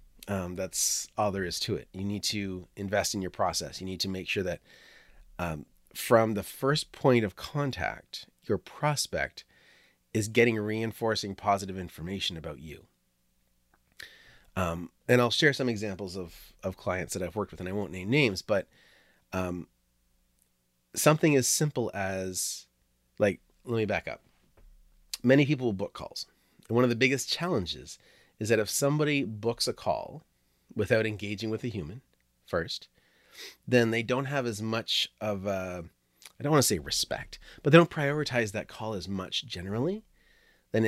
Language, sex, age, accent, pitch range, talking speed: English, male, 30-49, American, 90-120 Hz, 165 wpm